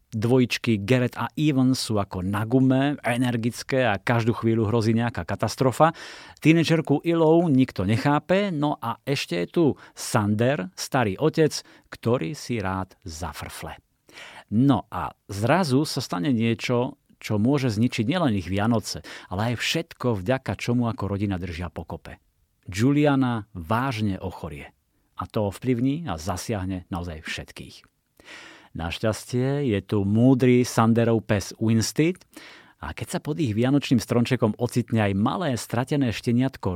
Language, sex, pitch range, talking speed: Slovak, male, 100-130 Hz, 130 wpm